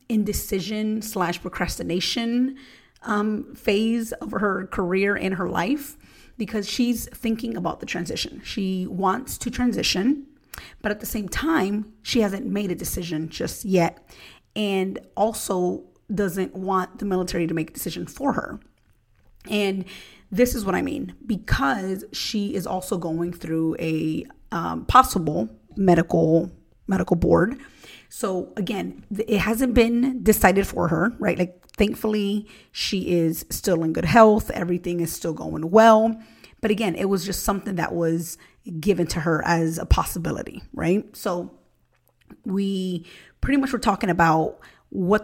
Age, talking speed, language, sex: 30-49, 145 wpm, English, female